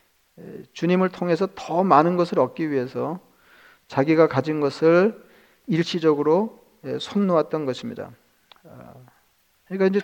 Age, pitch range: 40-59, 145-180 Hz